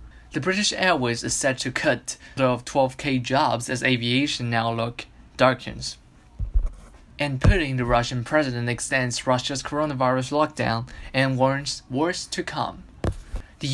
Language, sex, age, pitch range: Chinese, male, 10-29, 120-150 Hz